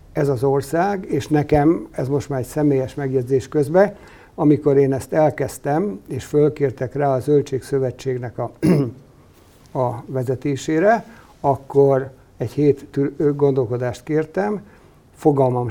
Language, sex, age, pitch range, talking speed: Hungarian, male, 60-79, 130-155 Hz, 120 wpm